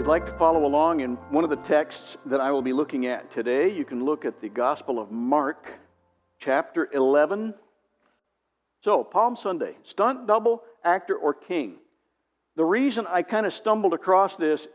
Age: 60-79